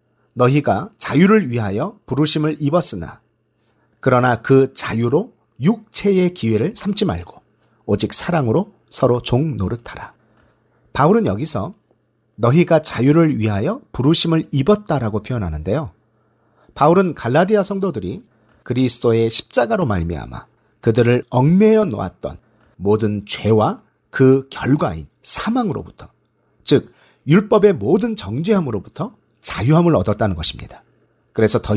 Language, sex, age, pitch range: Korean, male, 40-59, 110-165 Hz